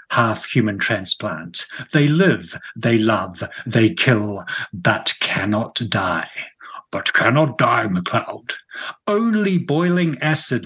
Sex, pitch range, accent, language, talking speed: male, 110-155 Hz, British, English, 120 wpm